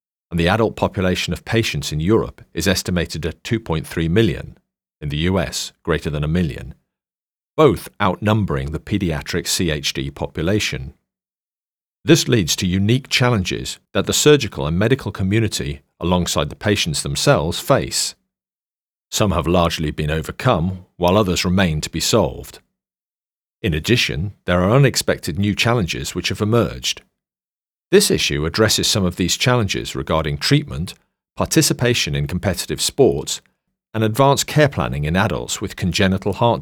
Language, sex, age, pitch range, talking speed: English, male, 40-59, 80-115 Hz, 140 wpm